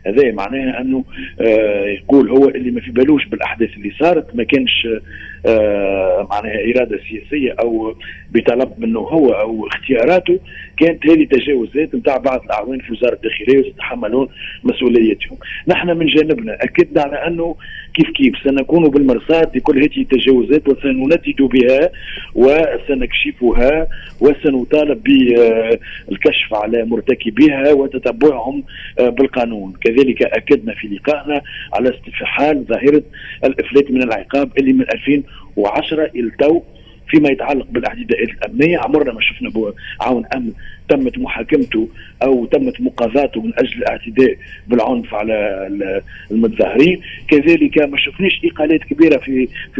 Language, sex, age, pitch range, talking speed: Arabic, male, 40-59, 120-155 Hz, 125 wpm